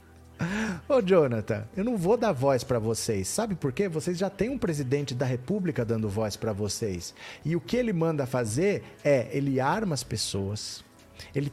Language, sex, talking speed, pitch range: Portuguese, male, 180 wpm, 120-180 Hz